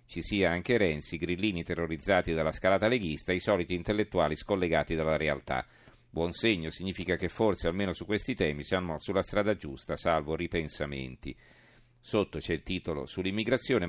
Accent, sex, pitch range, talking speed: native, male, 85-105 Hz, 150 wpm